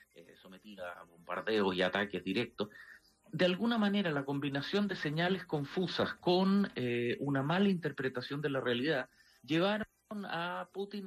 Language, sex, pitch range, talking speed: English, male, 135-185 Hz, 135 wpm